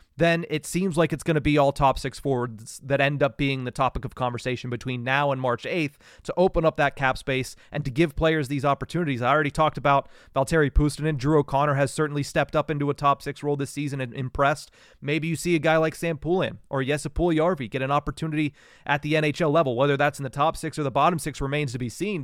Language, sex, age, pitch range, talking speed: English, male, 30-49, 140-175 Hz, 245 wpm